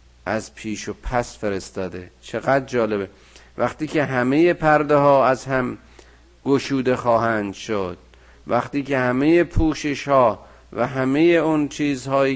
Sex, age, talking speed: male, 50-69, 125 wpm